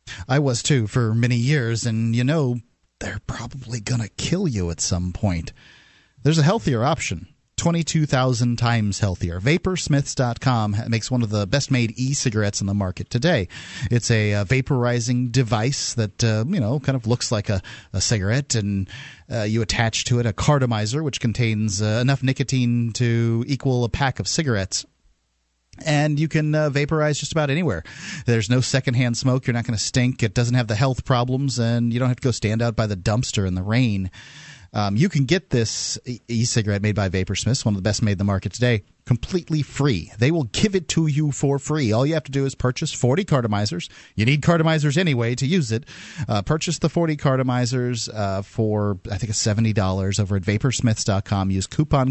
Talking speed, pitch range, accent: 190 wpm, 105-135 Hz, American